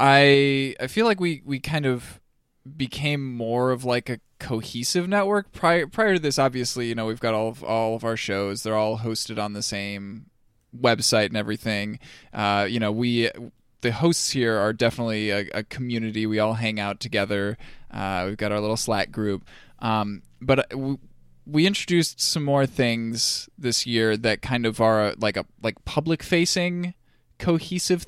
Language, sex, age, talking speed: English, male, 10-29, 175 wpm